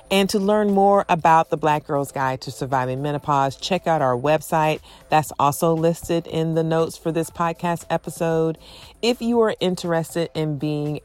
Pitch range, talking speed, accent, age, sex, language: 140-180 Hz, 175 wpm, American, 40-59, female, English